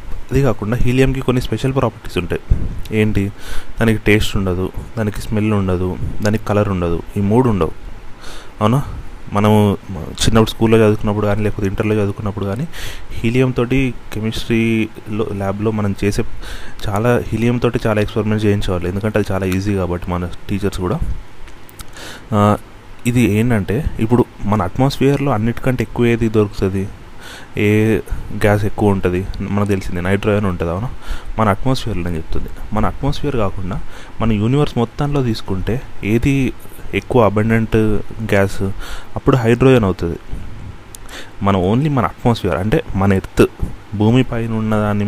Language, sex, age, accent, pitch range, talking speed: Telugu, male, 30-49, native, 95-115 Hz, 125 wpm